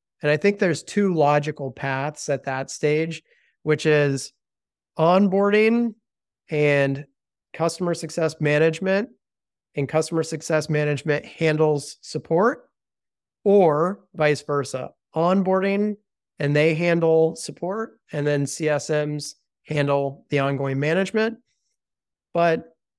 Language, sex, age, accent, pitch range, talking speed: English, male, 30-49, American, 145-165 Hz, 100 wpm